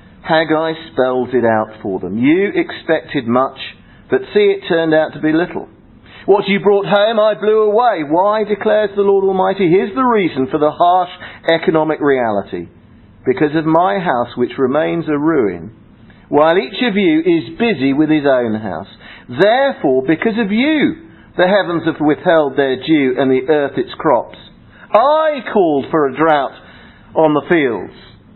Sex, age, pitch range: male, 50-69, 135-210 Hz